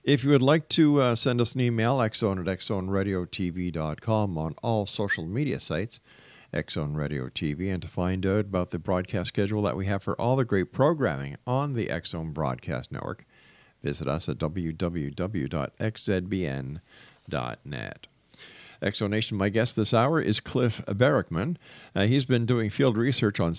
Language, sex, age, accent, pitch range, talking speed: English, male, 50-69, American, 90-120 Hz, 155 wpm